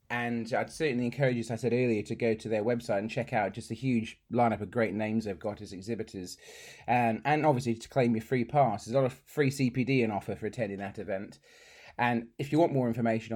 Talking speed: 240 wpm